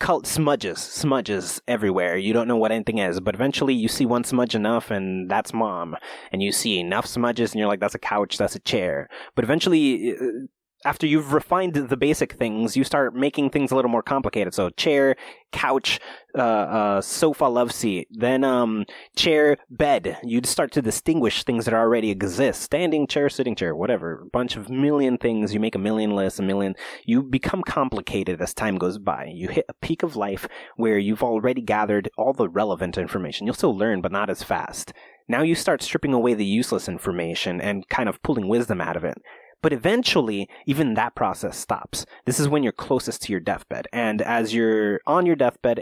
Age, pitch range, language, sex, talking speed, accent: 30-49, 105-140 Hz, English, male, 200 wpm, American